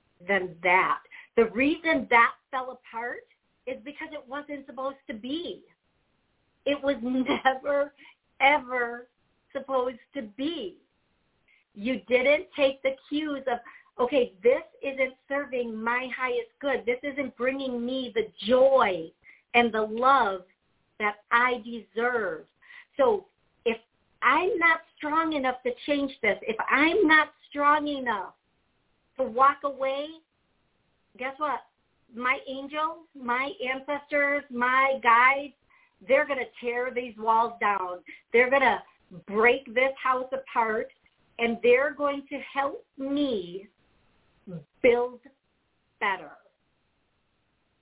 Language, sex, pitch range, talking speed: English, female, 235-285 Hz, 115 wpm